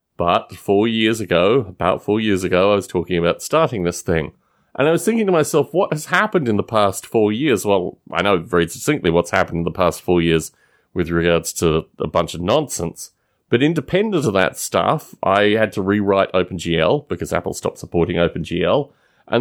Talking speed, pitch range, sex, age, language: 200 wpm, 90-125 Hz, male, 30-49, English